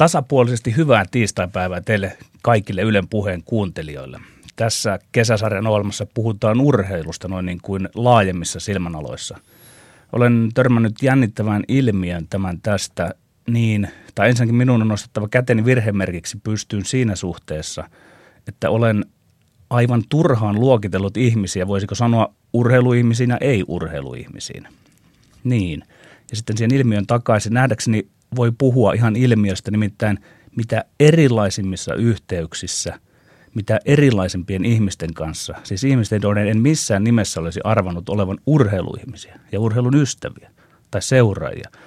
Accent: native